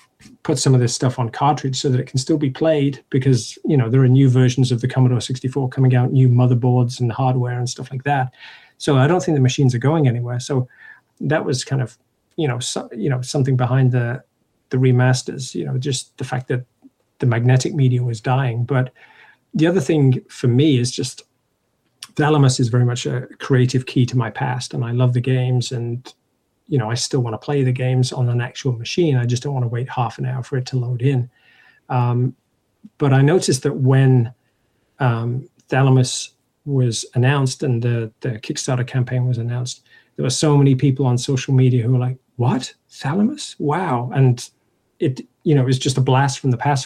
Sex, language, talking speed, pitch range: male, English, 210 wpm, 125-140 Hz